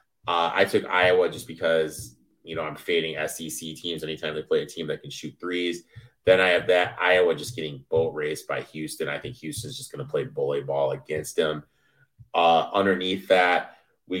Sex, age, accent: male, 30-49, American